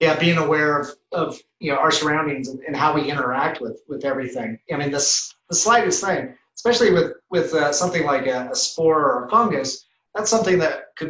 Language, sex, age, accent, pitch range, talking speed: English, male, 30-49, American, 140-170 Hz, 210 wpm